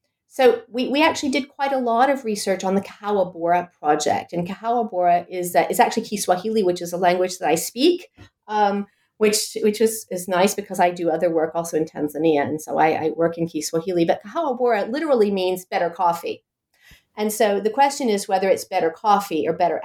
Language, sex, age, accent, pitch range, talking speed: English, female, 40-59, American, 170-225 Hz, 200 wpm